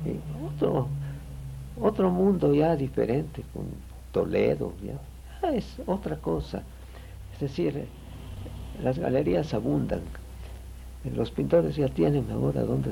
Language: Spanish